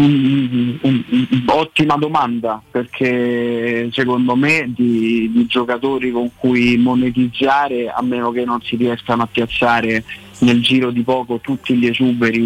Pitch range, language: 115-130 Hz, Italian